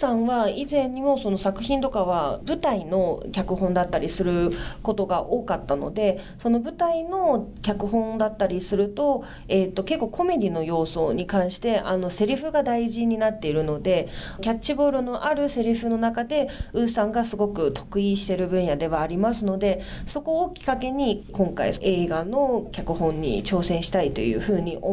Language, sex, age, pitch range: Japanese, female, 30-49, 185-235 Hz